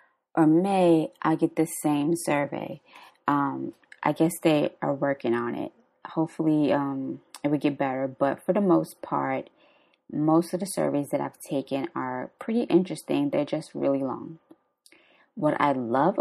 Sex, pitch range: female, 145-180 Hz